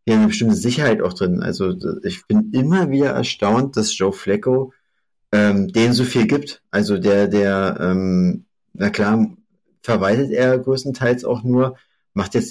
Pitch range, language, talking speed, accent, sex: 105-130 Hz, German, 160 wpm, German, male